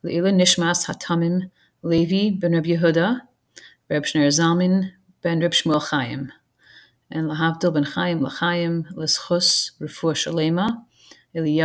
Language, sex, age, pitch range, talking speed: English, female, 30-49, 160-190 Hz, 95 wpm